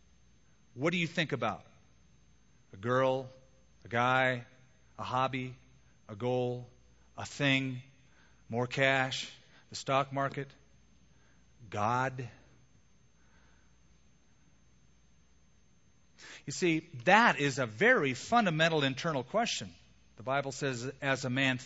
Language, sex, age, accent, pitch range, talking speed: English, male, 40-59, American, 110-155 Hz, 100 wpm